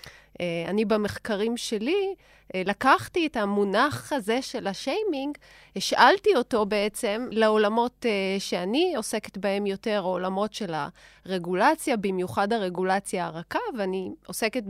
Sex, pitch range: female, 195-255 Hz